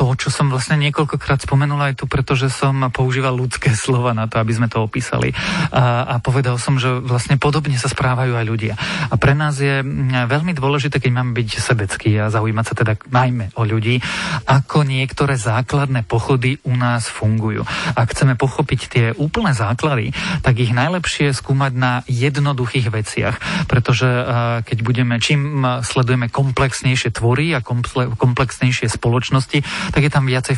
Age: 40-59